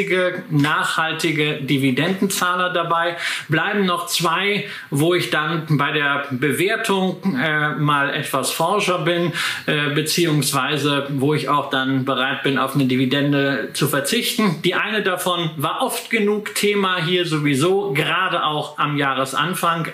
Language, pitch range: German, 145-180 Hz